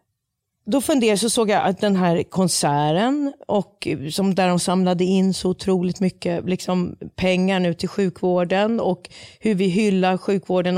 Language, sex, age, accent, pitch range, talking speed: English, female, 30-49, Swedish, 180-230 Hz, 155 wpm